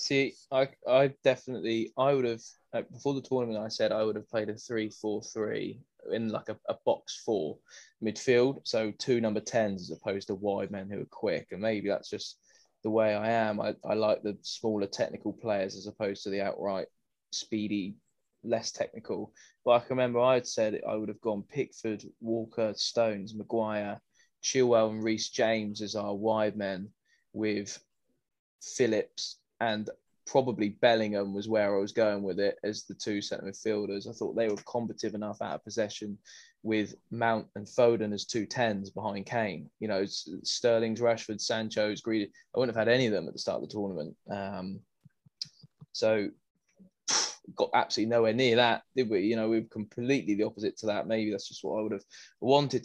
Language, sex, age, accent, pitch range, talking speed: English, male, 20-39, British, 105-115 Hz, 185 wpm